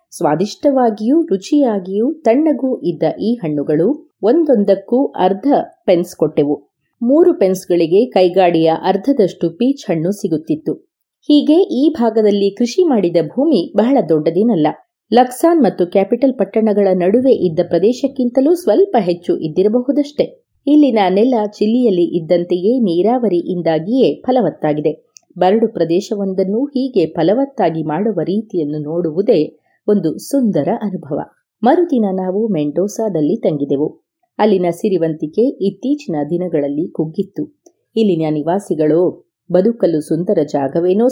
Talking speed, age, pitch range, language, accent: 95 wpm, 30-49, 170-245 Hz, Kannada, native